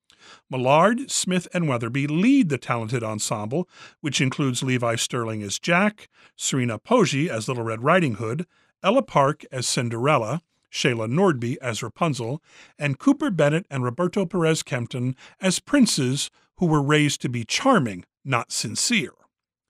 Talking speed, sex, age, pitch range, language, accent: 135 wpm, male, 50-69, 120-170 Hz, English, American